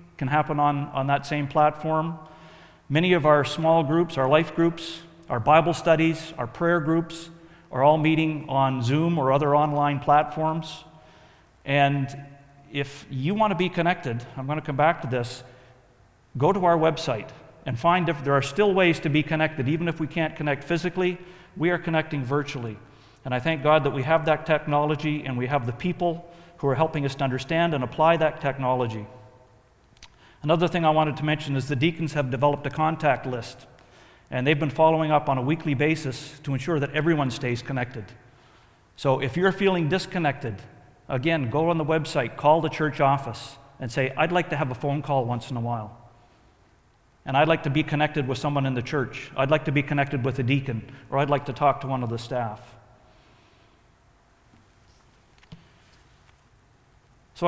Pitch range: 130-160 Hz